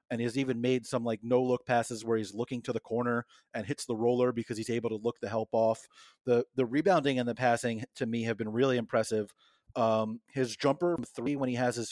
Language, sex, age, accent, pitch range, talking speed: English, male, 30-49, American, 115-130 Hz, 235 wpm